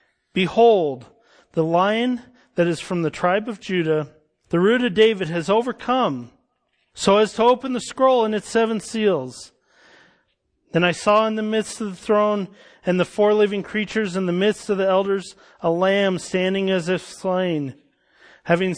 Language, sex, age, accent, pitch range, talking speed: English, male, 40-59, American, 180-215 Hz, 170 wpm